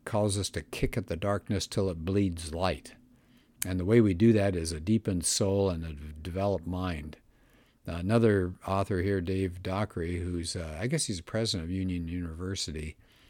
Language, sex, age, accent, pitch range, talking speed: English, male, 50-69, American, 90-110 Hz, 175 wpm